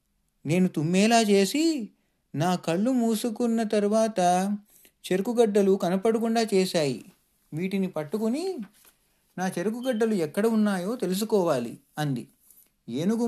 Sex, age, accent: male, 30-49, native